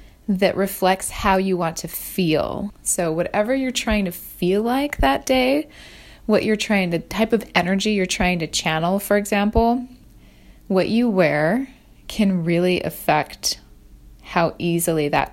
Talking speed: 150 wpm